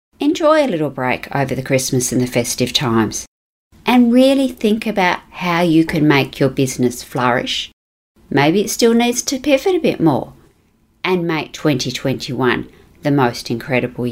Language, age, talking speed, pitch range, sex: English, 40-59, 155 wpm, 130-205 Hz, female